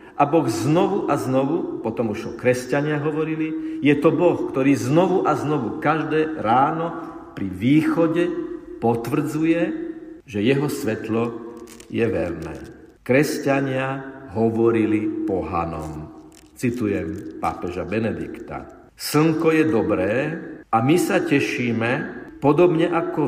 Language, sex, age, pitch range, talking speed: Slovak, male, 50-69, 115-165 Hz, 110 wpm